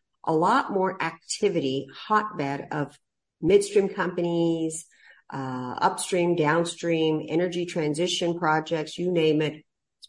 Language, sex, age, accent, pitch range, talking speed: English, female, 50-69, American, 155-220 Hz, 105 wpm